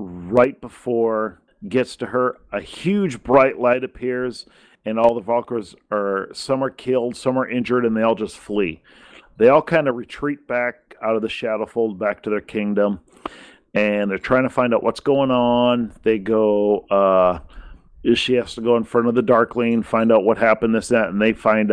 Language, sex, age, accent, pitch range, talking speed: English, male, 40-59, American, 105-120 Hz, 195 wpm